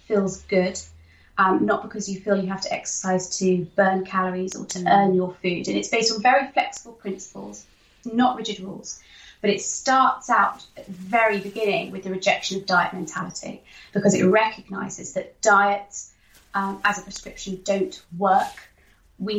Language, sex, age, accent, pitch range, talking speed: English, female, 20-39, British, 185-215 Hz, 170 wpm